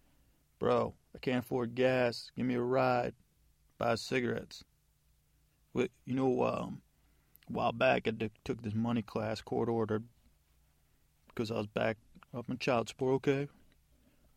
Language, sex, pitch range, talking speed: English, male, 110-135 Hz, 135 wpm